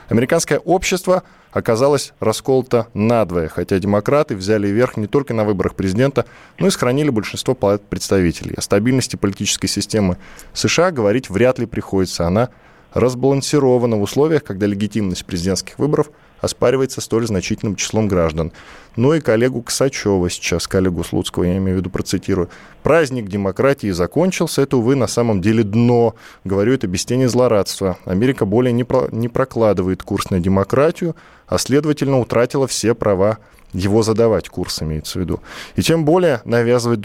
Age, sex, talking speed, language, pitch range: 20-39, male, 145 wpm, Russian, 100-130 Hz